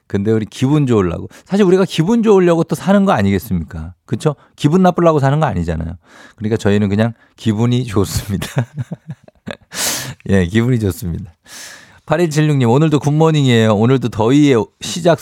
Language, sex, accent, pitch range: Korean, male, native, 105-160 Hz